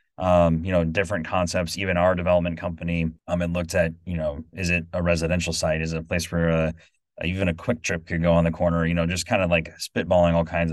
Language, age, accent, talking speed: English, 30-49, American, 245 wpm